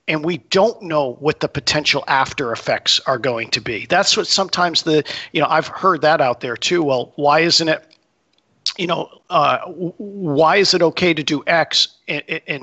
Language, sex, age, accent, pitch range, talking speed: English, male, 50-69, American, 145-175 Hz, 190 wpm